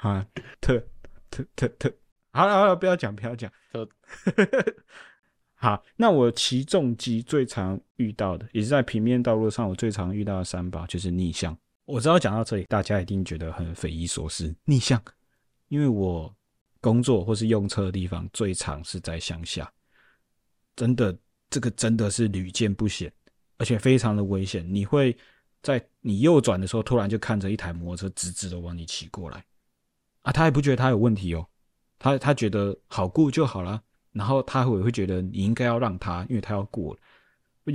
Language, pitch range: Chinese, 95-130 Hz